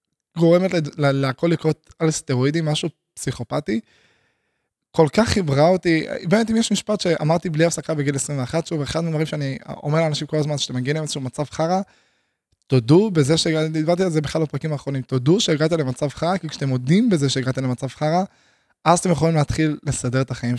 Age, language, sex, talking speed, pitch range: 20-39, Hebrew, male, 185 wpm, 140-175 Hz